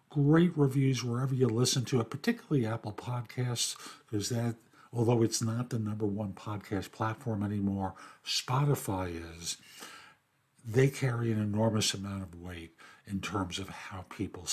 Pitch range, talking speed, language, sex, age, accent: 115-160 Hz, 145 wpm, English, male, 60-79, American